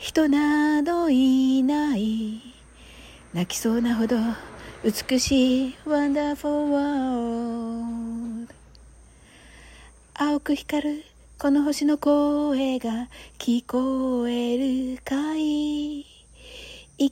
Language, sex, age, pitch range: Japanese, female, 40-59, 235-295 Hz